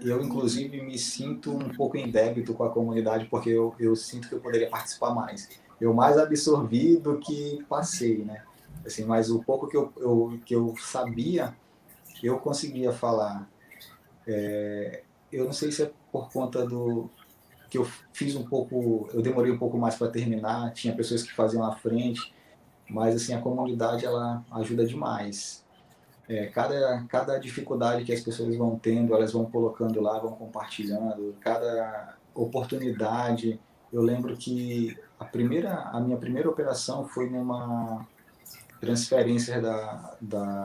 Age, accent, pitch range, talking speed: 20-39, Brazilian, 115-130 Hz, 155 wpm